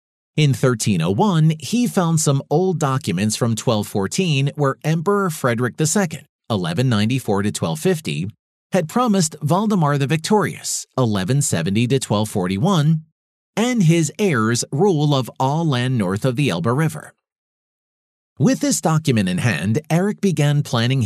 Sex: male